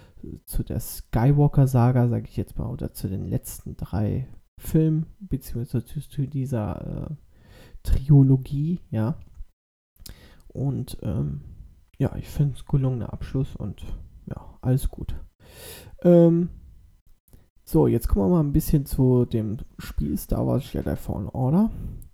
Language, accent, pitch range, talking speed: German, German, 105-145 Hz, 125 wpm